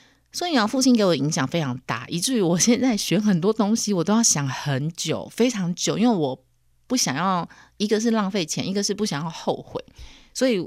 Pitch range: 150-215 Hz